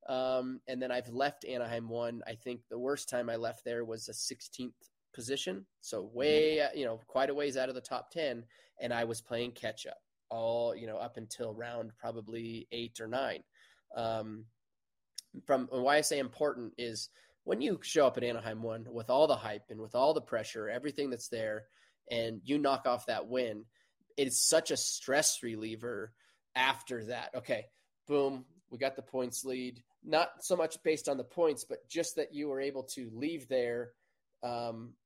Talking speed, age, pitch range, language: 190 wpm, 20-39, 115-135 Hz, English